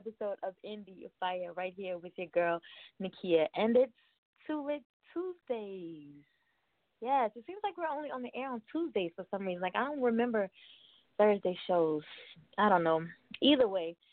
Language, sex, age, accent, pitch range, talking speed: English, female, 20-39, American, 170-215 Hz, 165 wpm